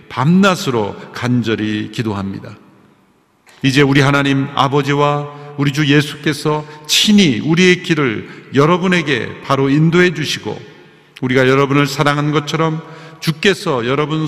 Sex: male